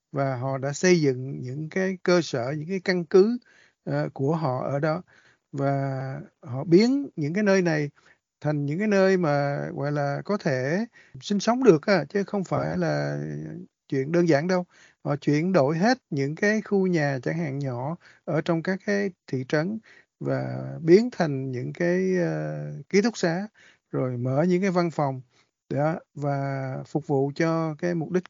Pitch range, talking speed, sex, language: 140-180 Hz, 180 wpm, male, Vietnamese